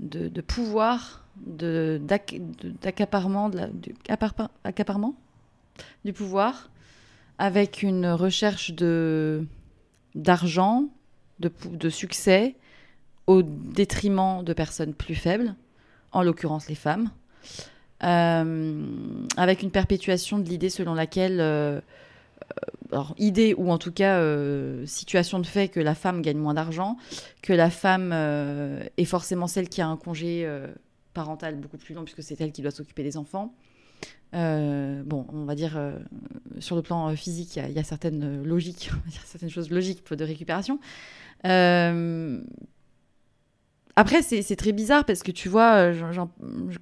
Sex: female